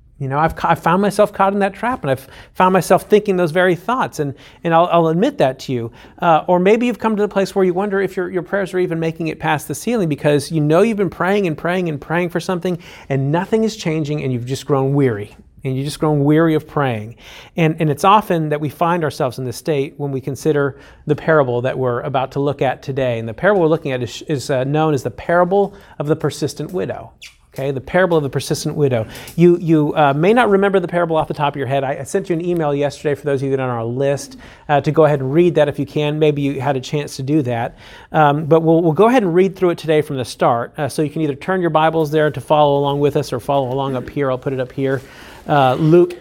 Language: English